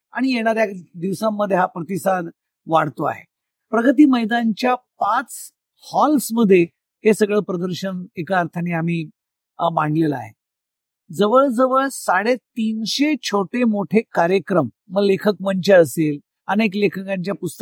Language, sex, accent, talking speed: Marathi, male, native, 80 wpm